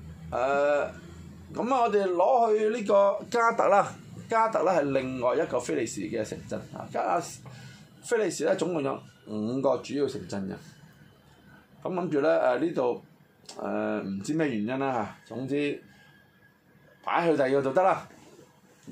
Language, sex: Chinese, male